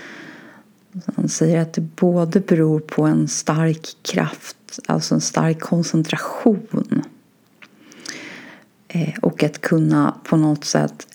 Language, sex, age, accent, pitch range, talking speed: Swedish, female, 30-49, native, 160-200 Hz, 110 wpm